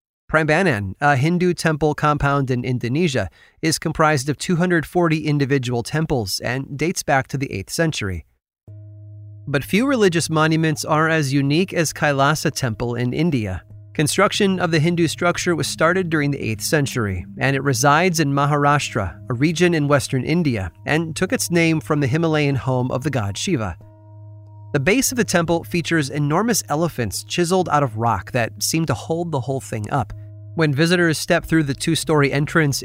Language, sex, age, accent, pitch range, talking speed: English, male, 30-49, American, 120-160 Hz, 170 wpm